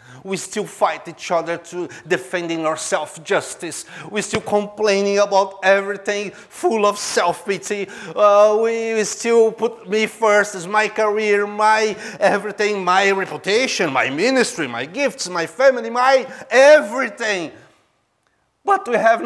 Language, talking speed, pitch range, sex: English, 130 wpm, 195-245 Hz, male